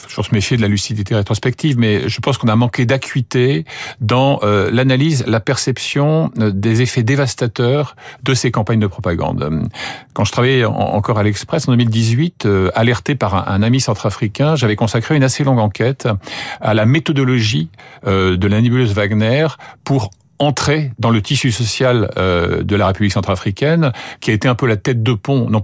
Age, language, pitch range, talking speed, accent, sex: 50-69, French, 105-130 Hz, 180 wpm, French, male